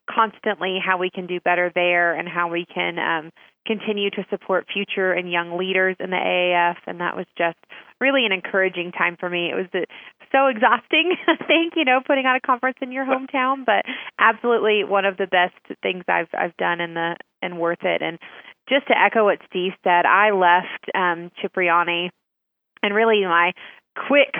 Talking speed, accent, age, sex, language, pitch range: 190 wpm, American, 30-49, female, English, 180-215 Hz